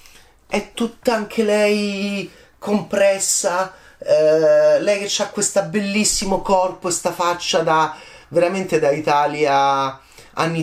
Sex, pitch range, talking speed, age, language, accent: male, 145-195 Hz, 105 wpm, 30-49, Italian, native